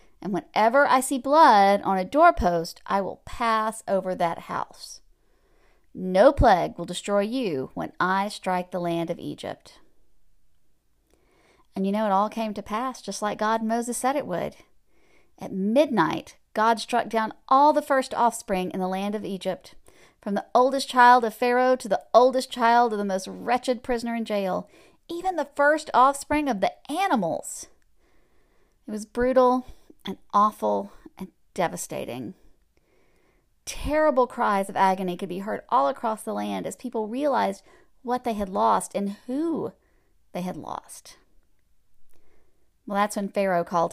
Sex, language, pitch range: female, English, 195-255 Hz